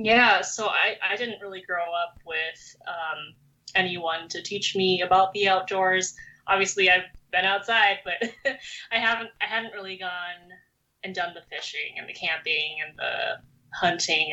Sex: female